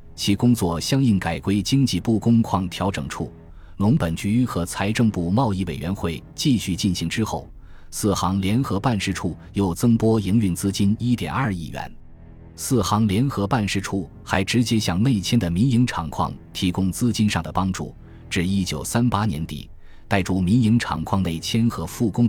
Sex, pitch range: male, 85-115 Hz